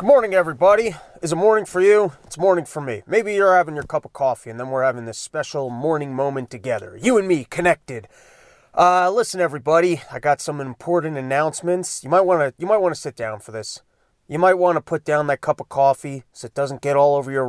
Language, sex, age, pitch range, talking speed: English, male, 30-49, 150-215 Hz, 235 wpm